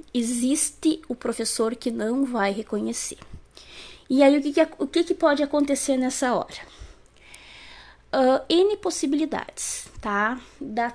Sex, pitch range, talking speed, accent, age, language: female, 225-270 Hz, 130 wpm, Brazilian, 20-39, Portuguese